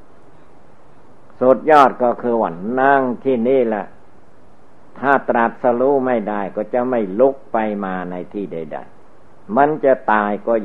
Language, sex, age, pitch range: Thai, male, 60-79, 105-125 Hz